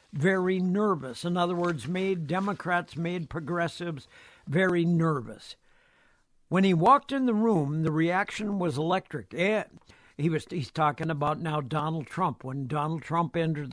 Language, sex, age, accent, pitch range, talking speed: English, male, 60-79, American, 160-210 Hz, 145 wpm